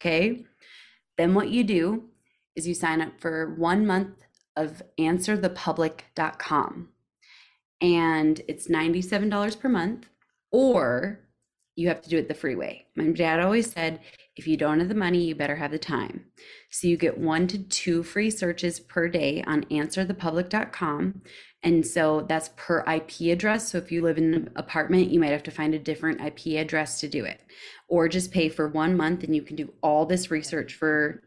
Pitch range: 155-185 Hz